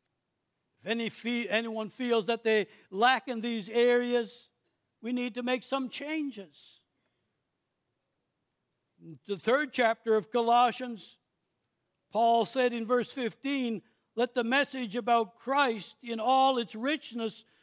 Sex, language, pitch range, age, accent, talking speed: male, English, 235-305 Hz, 60-79, American, 115 wpm